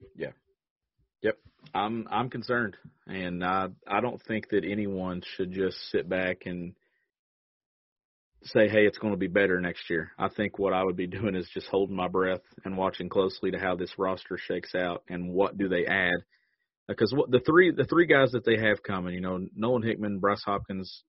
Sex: male